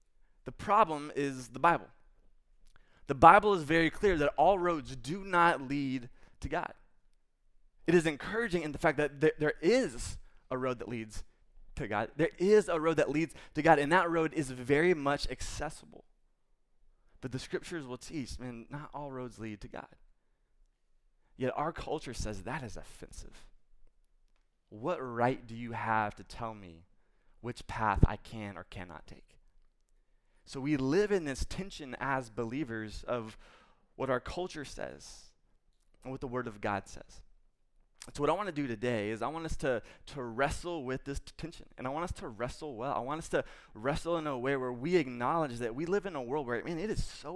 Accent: American